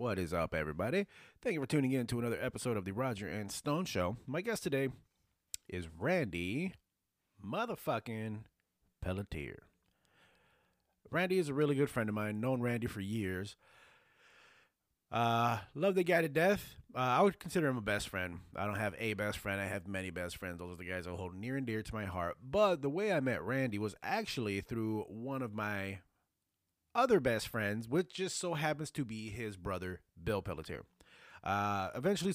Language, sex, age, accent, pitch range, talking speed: English, male, 30-49, American, 100-140 Hz, 185 wpm